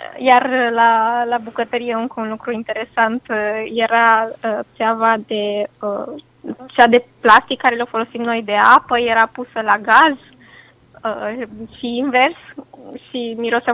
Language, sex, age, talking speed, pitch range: Romanian, female, 20-39, 135 wpm, 210-245 Hz